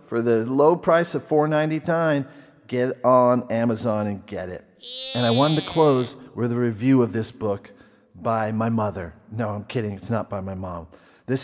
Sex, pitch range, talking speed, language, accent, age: male, 110-140 Hz, 185 wpm, English, American, 40-59